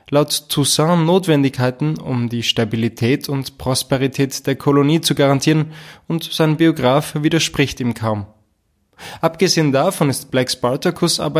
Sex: male